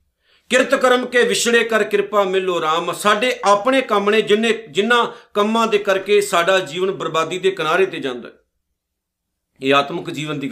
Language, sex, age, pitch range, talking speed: Punjabi, male, 50-69, 170-210 Hz, 160 wpm